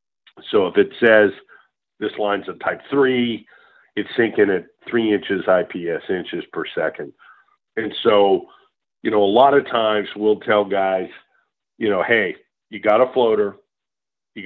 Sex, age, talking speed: male, 50-69, 155 wpm